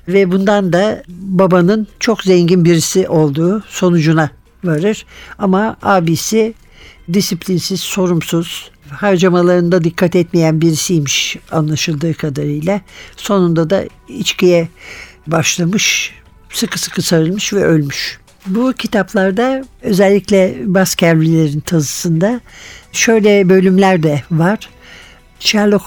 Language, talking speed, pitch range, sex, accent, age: Turkish, 90 wpm, 165-200 Hz, male, native, 60-79